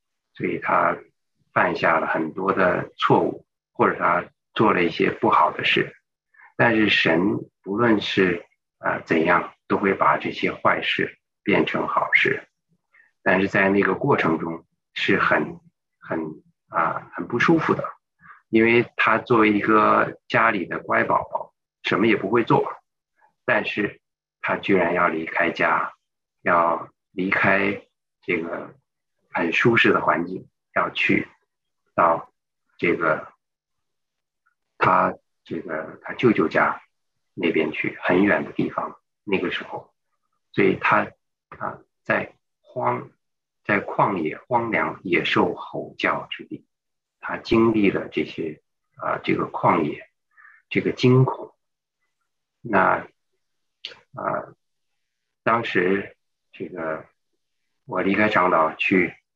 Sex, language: male, English